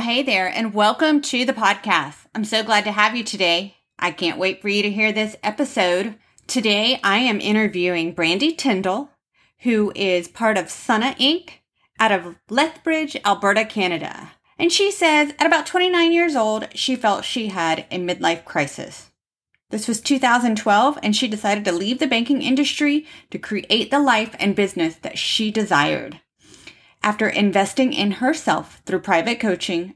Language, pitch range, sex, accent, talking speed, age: English, 190-270 Hz, female, American, 165 wpm, 30-49